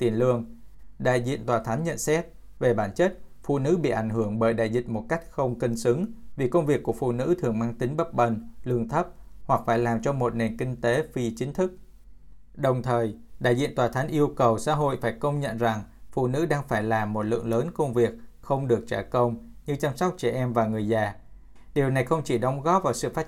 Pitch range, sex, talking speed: 115-145 Hz, male, 235 wpm